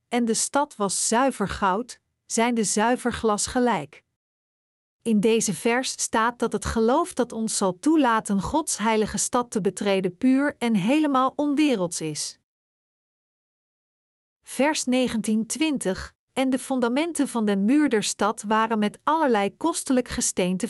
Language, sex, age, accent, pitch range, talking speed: Dutch, female, 50-69, Dutch, 195-255 Hz, 135 wpm